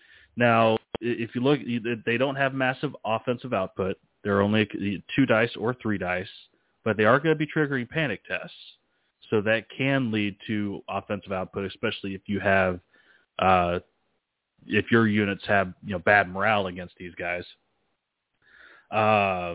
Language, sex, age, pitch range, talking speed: English, male, 30-49, 100-115 Hz, 155 wpm